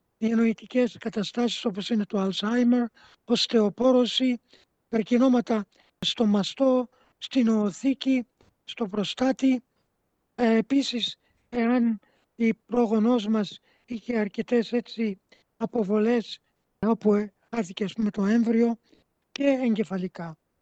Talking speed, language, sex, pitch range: 95 wpm, Greek, male, 205-240 Hz